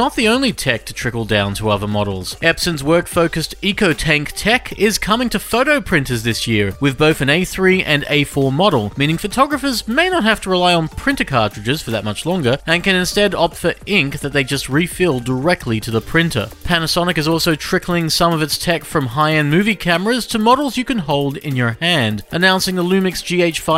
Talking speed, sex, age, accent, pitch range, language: 205 wpm, male, 30-49, Australian, 135-190 Hz, English